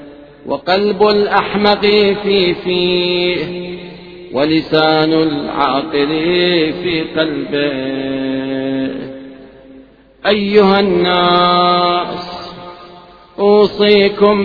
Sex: male